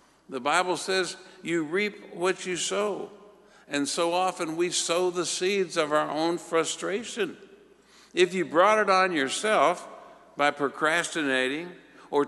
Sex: male